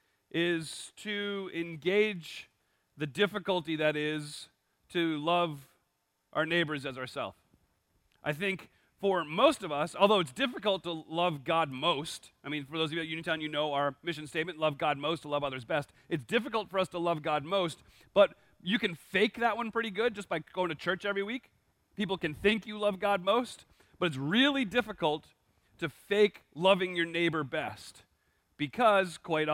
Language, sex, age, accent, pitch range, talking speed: English, male, 40-59, American, 150-195 Hz, 180 wpm